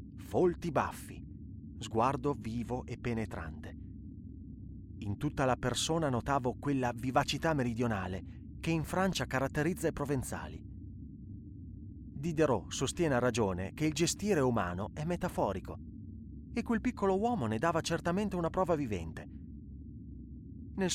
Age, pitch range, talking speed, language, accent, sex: 30-49, 95-150 Hz, 115 wpm, Italian, native, male